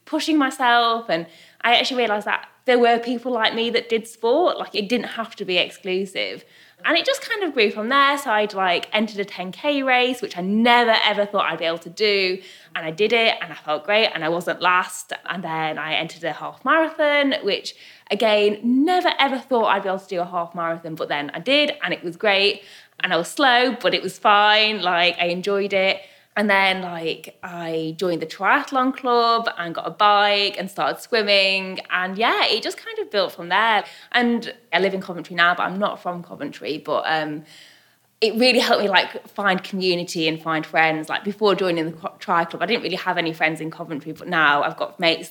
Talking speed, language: 220 wpm, English